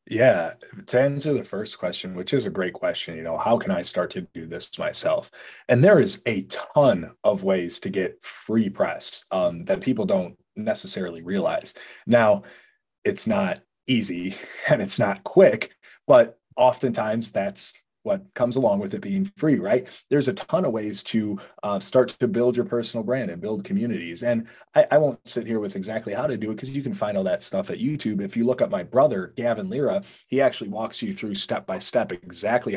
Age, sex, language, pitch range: 30-49, male, English, 105-165 Hz